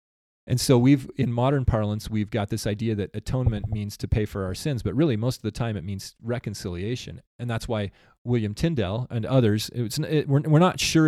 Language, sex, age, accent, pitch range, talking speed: English, male, 30-49, American, 105-125 Hz, 220 wpm